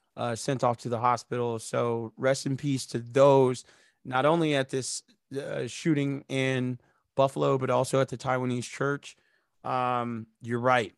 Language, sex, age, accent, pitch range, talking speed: English, male, 20-39, American, 115-135 Hz, 160 wpm